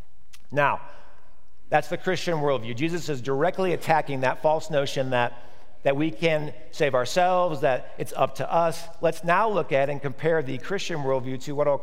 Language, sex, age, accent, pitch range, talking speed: English, male, 50-69, American, 130-165 Hz, 180 wpm